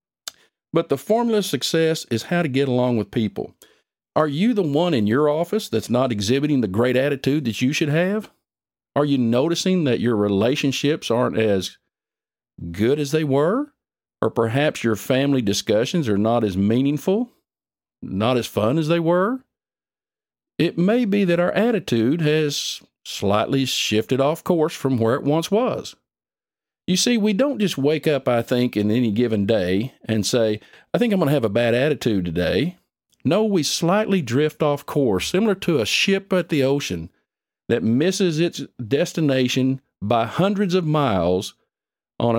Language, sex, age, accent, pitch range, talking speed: English, male, 50-69, American, 115-165 Hz, 170 wpm